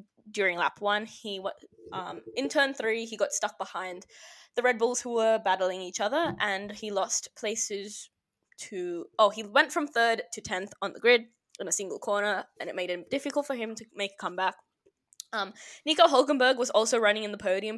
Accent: Australian